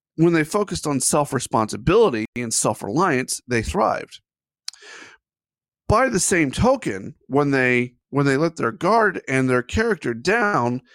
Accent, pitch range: American, 125-185 Hz